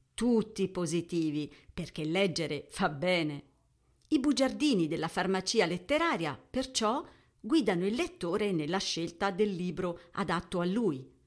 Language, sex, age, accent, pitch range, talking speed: Italian, female, 50-69, native, 170-235 Hz, 115 wpm